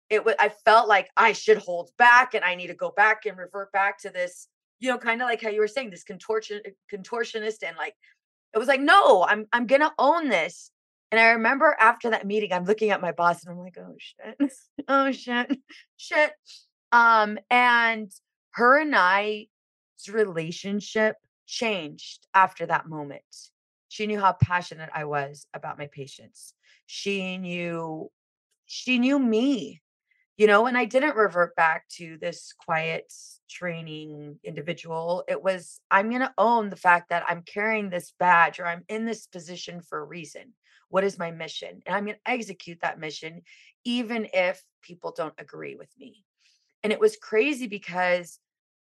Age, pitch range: 30-49, 175-235 Hz